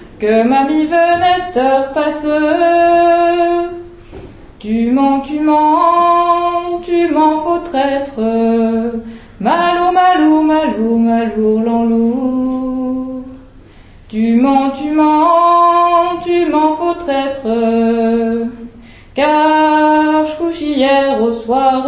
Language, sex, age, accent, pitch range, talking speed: French, female, 20-39, French, 235-345 Hz, 85 wpm